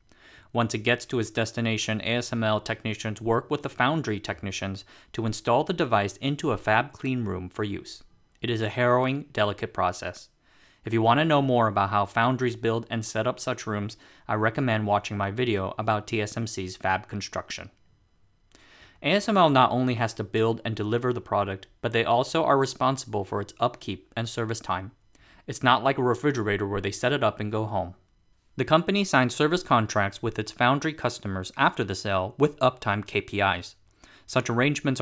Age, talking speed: 30-49, 180 wpm